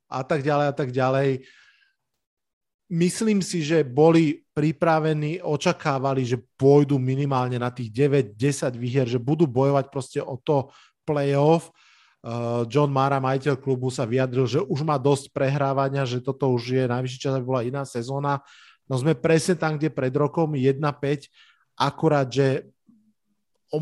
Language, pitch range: Slovak, 125-145 Hz